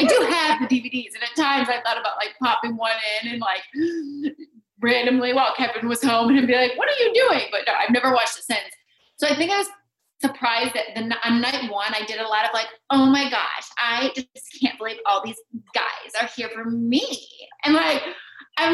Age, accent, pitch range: 30-49, American, 225-295 Hz